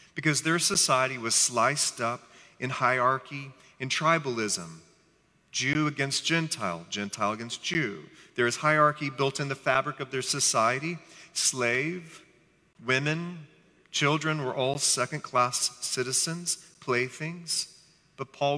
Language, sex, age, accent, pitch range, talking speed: English, male, 40-59, American, 130-165 Hz, 115 wpm